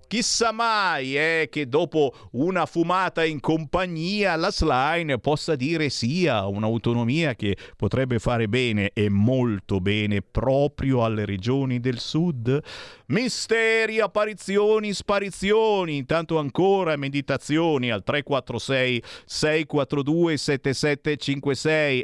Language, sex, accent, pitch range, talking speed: Italian, male, native, 115-160 Hz, 100 wpm